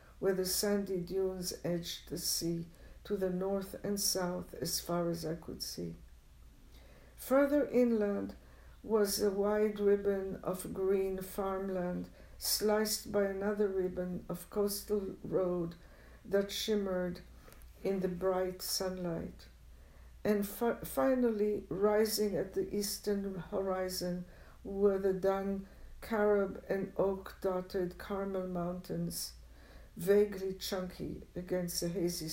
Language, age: English, 60-79